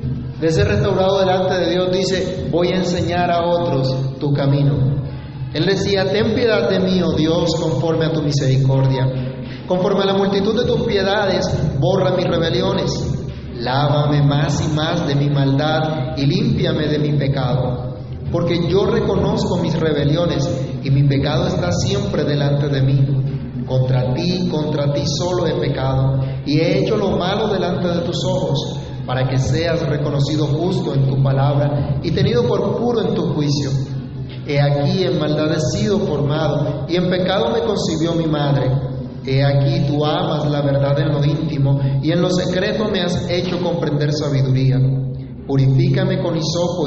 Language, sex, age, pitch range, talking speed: Spanish, male, 40-59, 135-175 Hz, 165 wpm